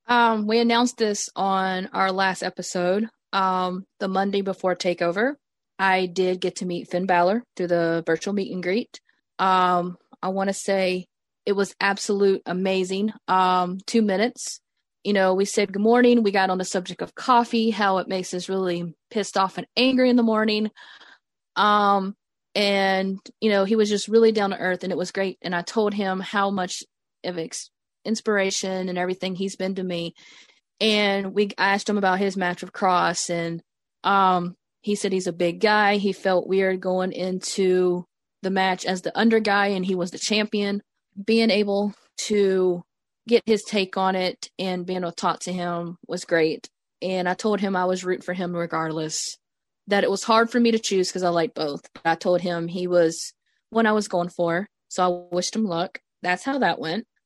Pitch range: 180-210 Hz